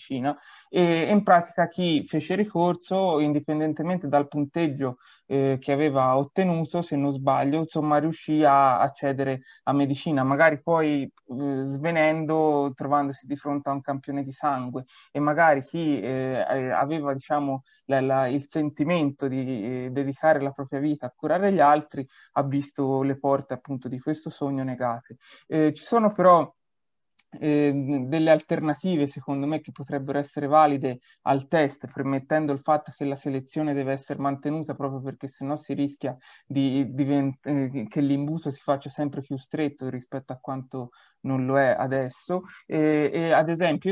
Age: 20-39